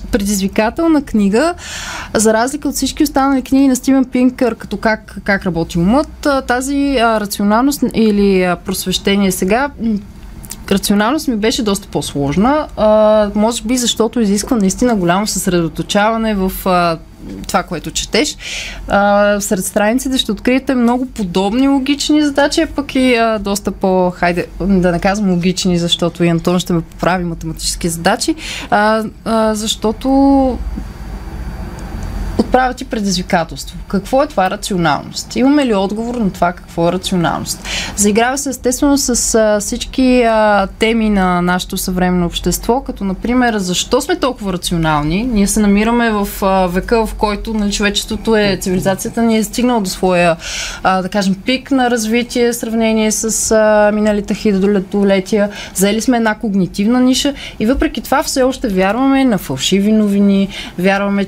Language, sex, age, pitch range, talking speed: Bulgarian, female, 20-39, 190-245 Hz, 145 wpm